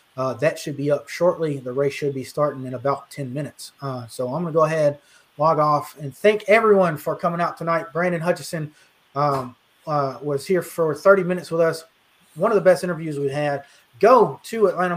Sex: male